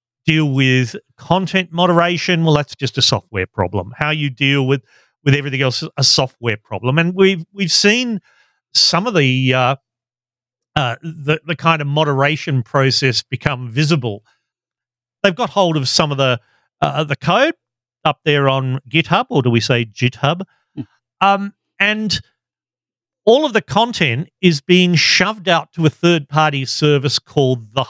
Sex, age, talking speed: male, 40-59, 160 wpm